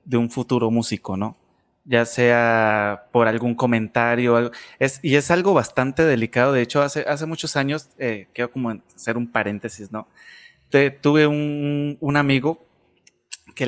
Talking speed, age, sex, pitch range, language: 155 wpm, 20-39, male, 115-140 Hz, Spanish